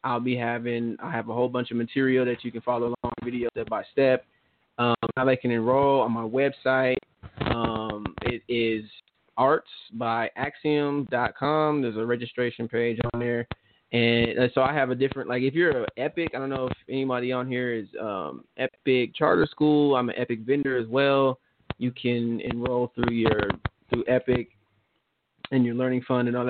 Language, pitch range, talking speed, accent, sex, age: English, 115-135 Hz, 180 wpm, American, male, 20-39